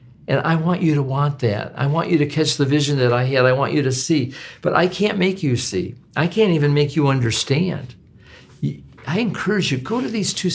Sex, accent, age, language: male, American, 50-69, English